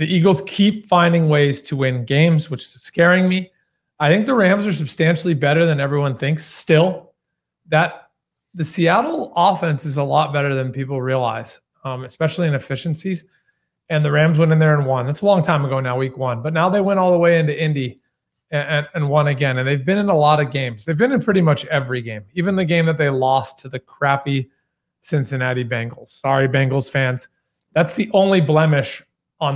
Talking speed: 205 wpm